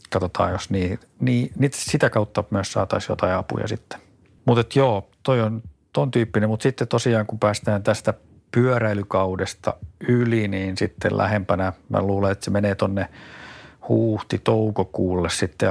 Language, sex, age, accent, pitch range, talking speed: Finnish, male, 50-69, native, 95-110 Hz, 140 wpm